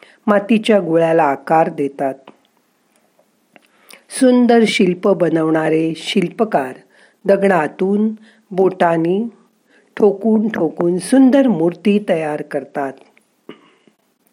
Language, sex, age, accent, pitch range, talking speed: Marathi, female, 50-69, native, 160-220 Hz, 65 wpm